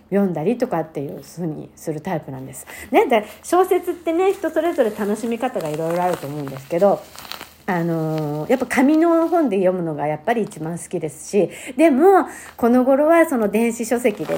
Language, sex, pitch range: Japanese, female, 170-260 Hz